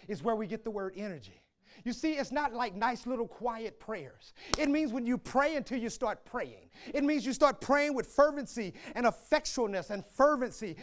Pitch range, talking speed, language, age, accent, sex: 210-310 Hz, 200 wpm, English, 30-49, American, male